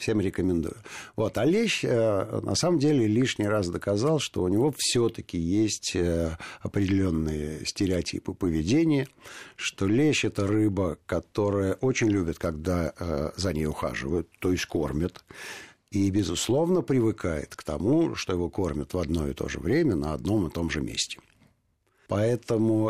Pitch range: 85-110 Hz